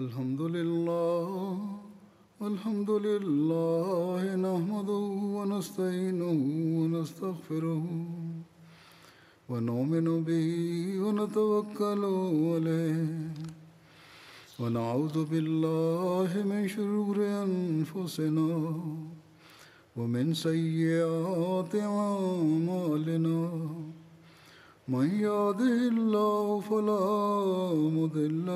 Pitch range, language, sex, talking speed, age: 160-205 Hz, Arabic, male, 50 wpm, 50-69